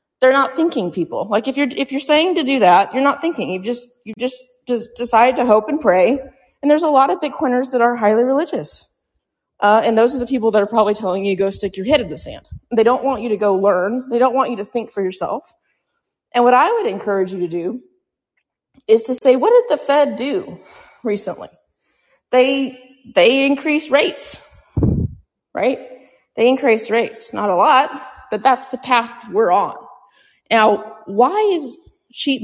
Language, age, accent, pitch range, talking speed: English, 30-49, American, 205-265 Hz, 200 wpm